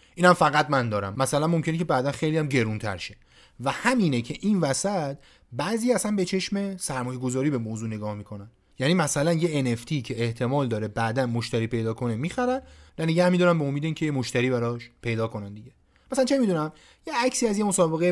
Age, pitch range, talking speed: 30-49, 120-180 Hz, 180 wpm